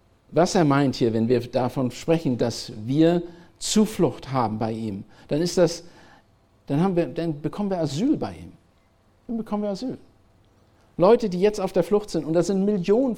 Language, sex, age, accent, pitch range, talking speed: German, male, 50-69, German, 110-165 Hz, 185 wpm